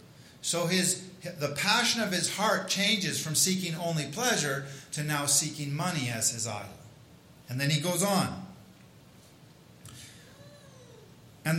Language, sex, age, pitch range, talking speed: English, male, 50-69, 130-180 Hz, 130 wpm